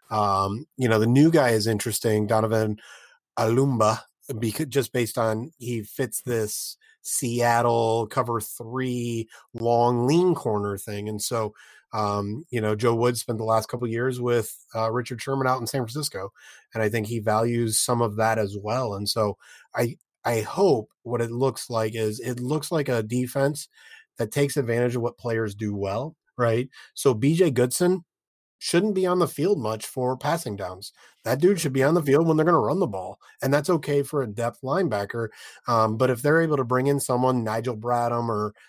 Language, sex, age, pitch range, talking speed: English, male, 30-49, 115-135 Hz, 190 wpm